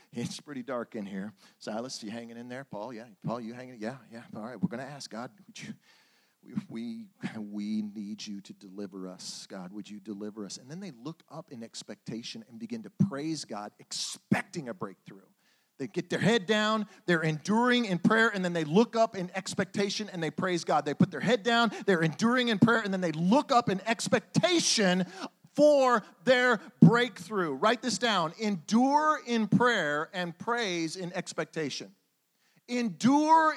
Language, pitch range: English, 150-220 Hz